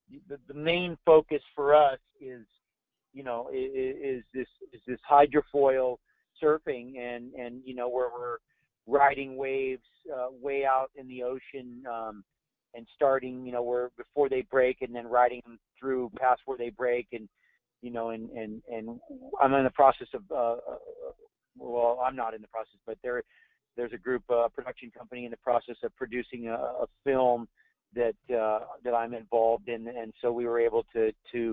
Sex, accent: male, American